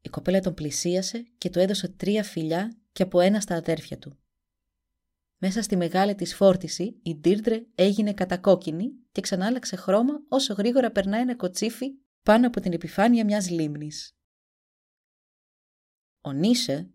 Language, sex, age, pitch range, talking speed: Greek, female, 20-39, 160-210 Hz, 140 wpm